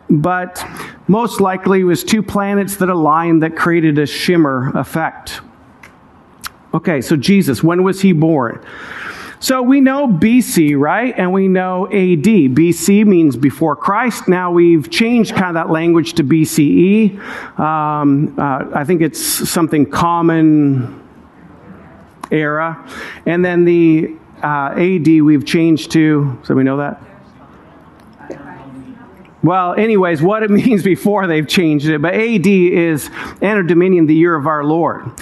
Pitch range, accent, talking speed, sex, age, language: 155-205 Hz, American, 140 wpm, male, 50-69, English